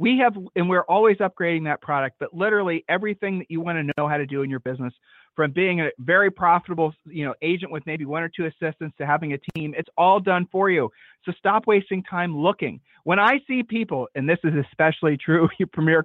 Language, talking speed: English, 220 wpm